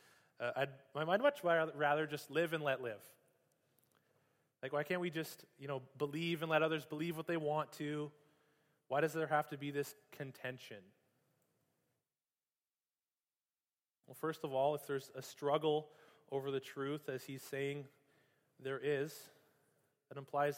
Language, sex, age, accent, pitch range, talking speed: English, male, 20-39, American, 130-145 Hz, 150 wpm